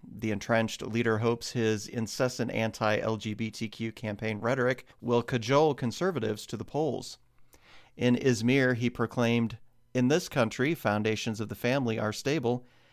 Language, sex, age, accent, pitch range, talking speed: English, male, 40-59, American, 110-125 Hz, 130 wpm